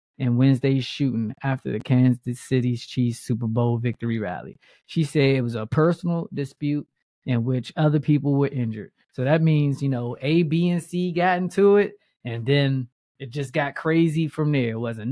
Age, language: 20-39, English